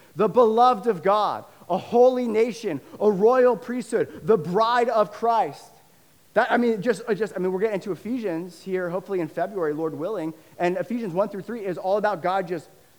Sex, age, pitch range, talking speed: male, 30-49, 145-205 Hz, 190 wpm